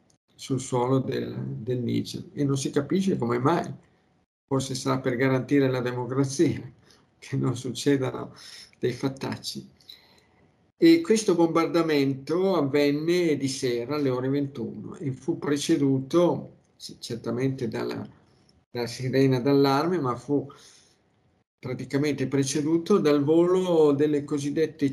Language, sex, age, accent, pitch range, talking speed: Italian, male, 50-69, native, 125-150 Hz, 115 wpm